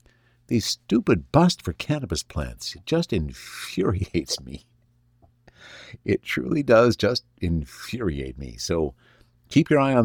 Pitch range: 75-120 Hz